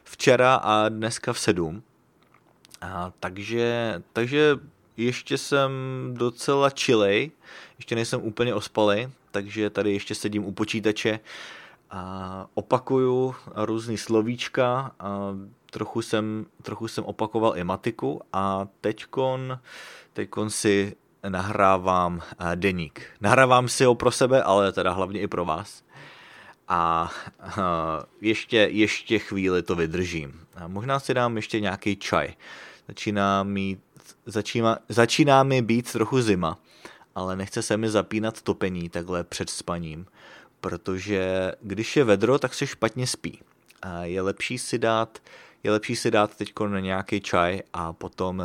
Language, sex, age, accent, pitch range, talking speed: English, male, 30-49, Czech, 95-120 Hz, 130 wpm